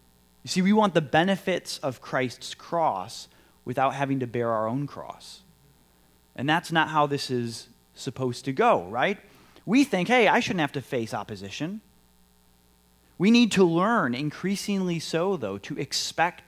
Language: English